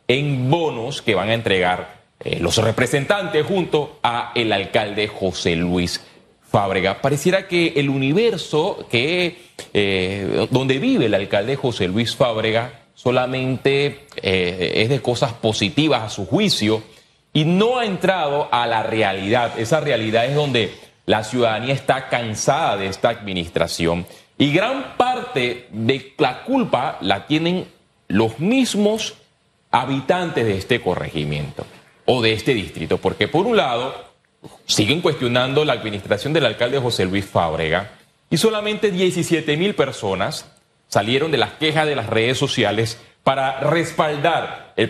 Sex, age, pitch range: male, 30-49, 110-155 Hz